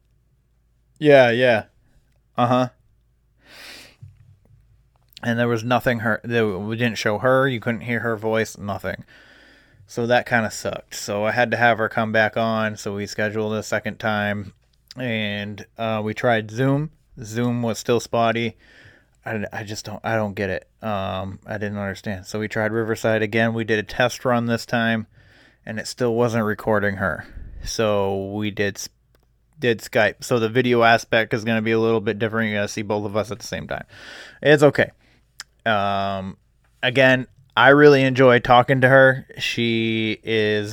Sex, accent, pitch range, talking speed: male, American, 105-125 Hz, 175 wpm